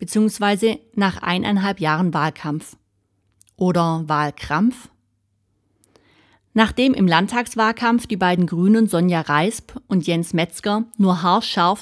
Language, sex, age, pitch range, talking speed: German, female, 30-49, 155-205 Hz, 100 wpm